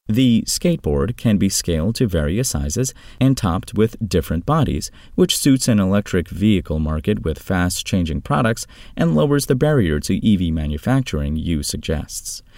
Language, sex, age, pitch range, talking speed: English, male, 30-49, 80-115 Hz, 150 wpm